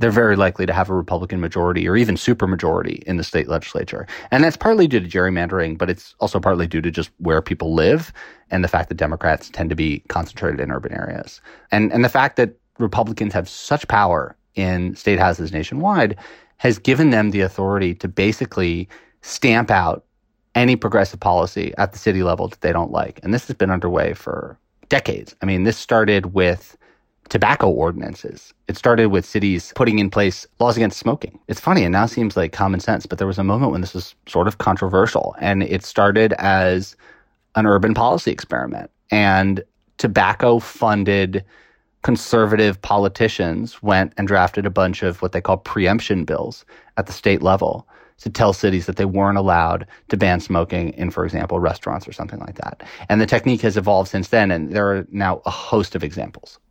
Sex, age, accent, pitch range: male, 30-49, American, 90-110 Hz